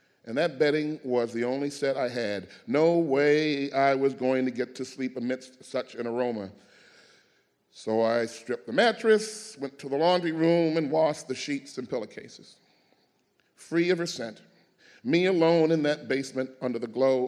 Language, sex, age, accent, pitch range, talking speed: English, male, 40-59, American, 125-155 Hz, 175 wpm